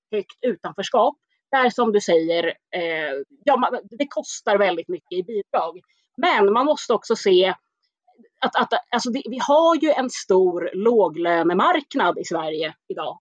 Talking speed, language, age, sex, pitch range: 125 wpm, Swedish, 30-49, female, 190-295 Hz